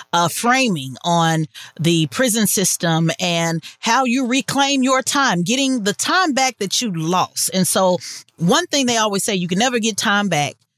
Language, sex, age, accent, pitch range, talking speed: English, female, 40-59, American, 160-210 Hz, 180 wpm